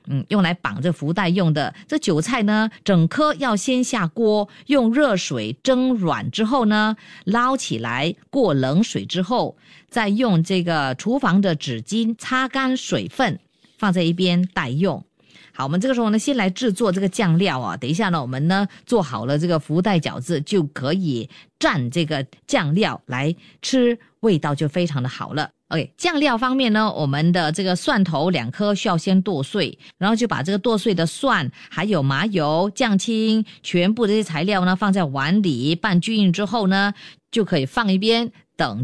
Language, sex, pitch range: Chinese, female, 165-225 Hz